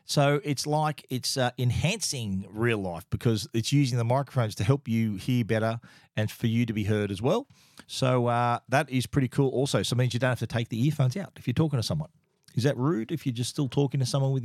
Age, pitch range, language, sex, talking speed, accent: 40-59, 115-145 Hz, English, male, 250 wpm, Australian